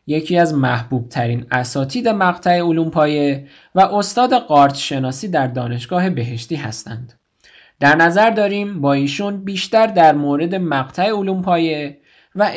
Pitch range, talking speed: 140-195 Hz, 125 wpm